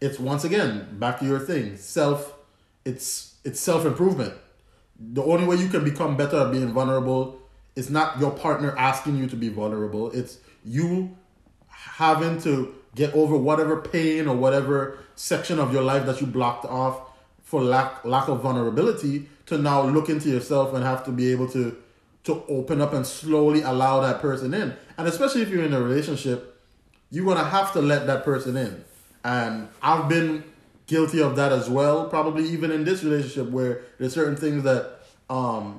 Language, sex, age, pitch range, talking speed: English, male, 30-49, 125-150 Hz, 180 wpm